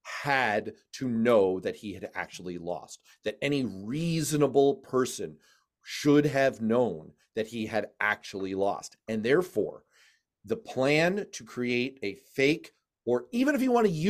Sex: male